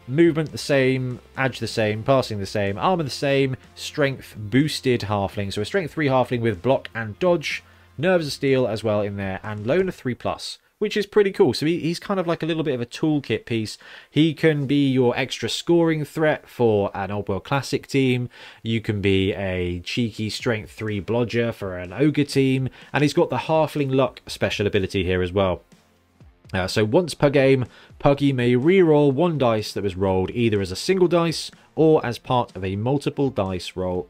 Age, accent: 20-39, British